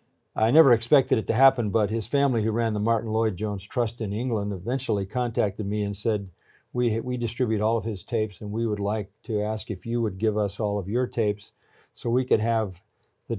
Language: English